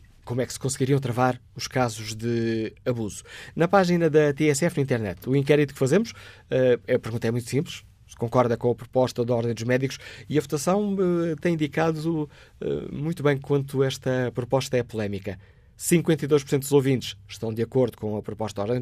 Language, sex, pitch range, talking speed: Portuguese, male, 115-145 Hz, 180 wpm